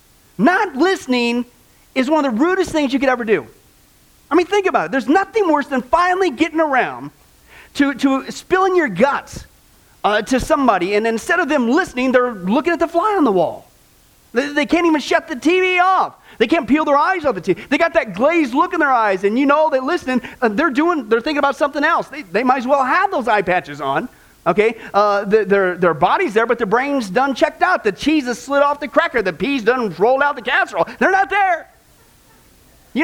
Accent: American